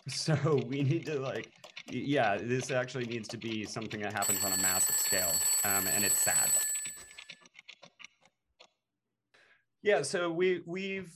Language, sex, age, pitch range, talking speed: English, male, 30-49, 105-135 Hz, 140 wpm